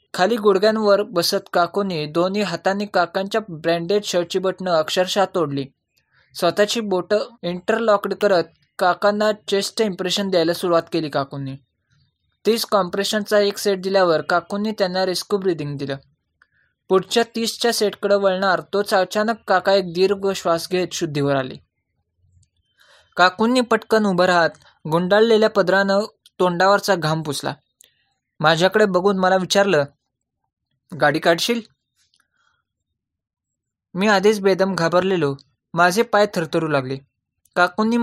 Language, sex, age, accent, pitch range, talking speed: Marathi, male, 20-39, native, 165-205 Hz, 110 wpm